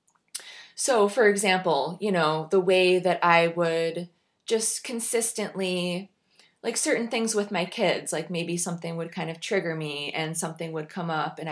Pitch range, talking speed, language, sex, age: 170-205 Hz, 165 wpm, English, female, 20-39